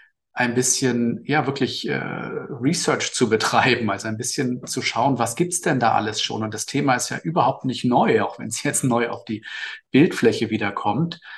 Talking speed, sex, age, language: 190 wpm, male, 40-59, English